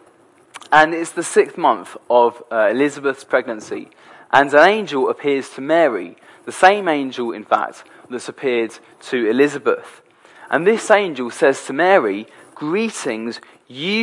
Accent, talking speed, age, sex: British, 135 wpm, 20-39, male